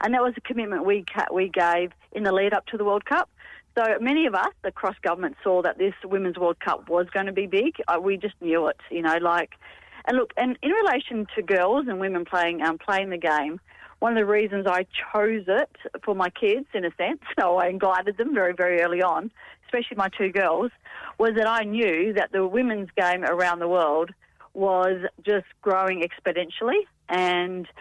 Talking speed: 205 wpm